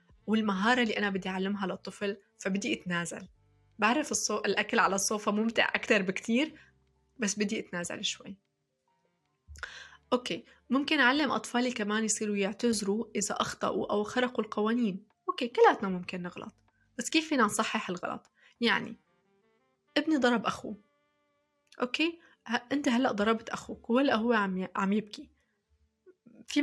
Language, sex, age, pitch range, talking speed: Arabic, female, 20-39, 200-255 Hz, 130 wpm